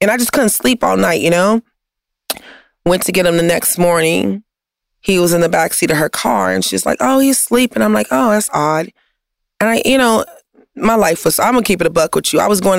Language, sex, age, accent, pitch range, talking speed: English, female, 30-49, American, 155-210 Hz, 260 wpm